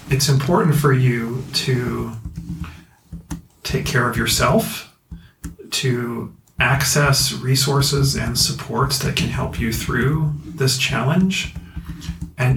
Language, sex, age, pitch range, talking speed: English, male, 40-59, 115-140 Hz, 105 wpm